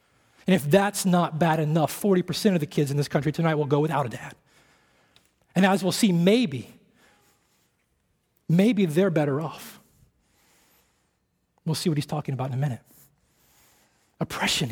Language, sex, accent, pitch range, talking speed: English, male, American, 145-190 Hz, 155 wpm